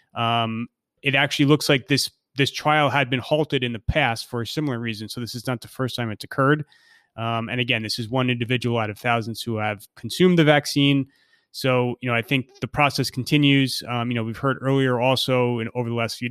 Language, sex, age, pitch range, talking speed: English, male, 30-49, 120-140 Hz, 230 wpm